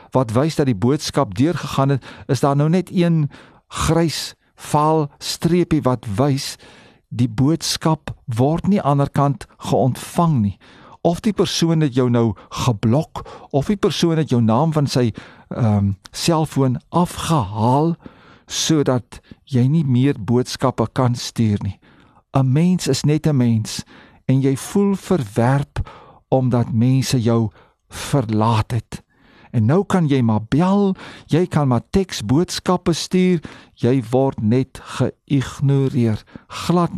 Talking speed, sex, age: 130 wpm, male, 50-69